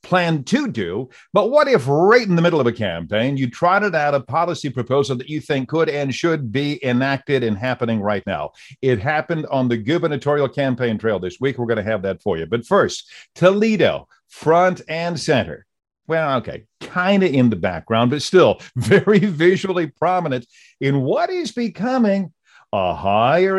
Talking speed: 180 wpm